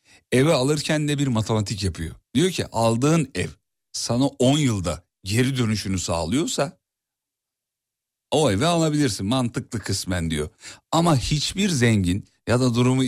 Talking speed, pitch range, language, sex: 130 wpm, 105-145 Hz, Turkish, male